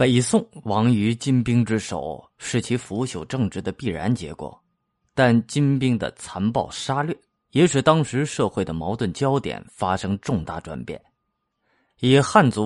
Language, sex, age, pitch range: Chinese, male, 30-49, 105-135 Hz